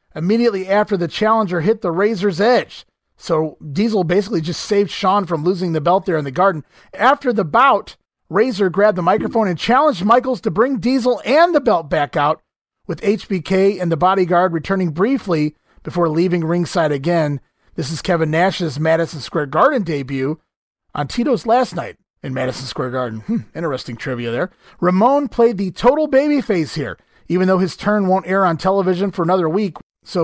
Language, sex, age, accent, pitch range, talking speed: English, male, 30-49, American, 170-220 Hz, 175 wpm